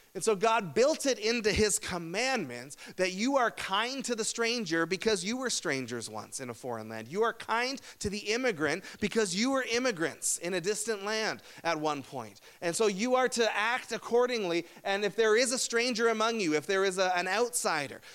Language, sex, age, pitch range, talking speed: English, male, 30-49, 155-215 Hz, 200 wpm